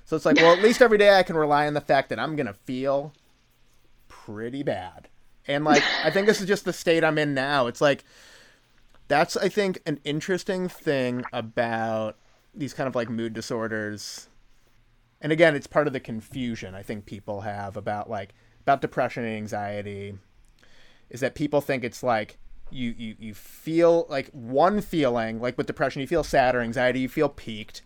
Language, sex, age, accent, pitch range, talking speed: English, male, 30-49, American, 115-155 Hz, 190 wpm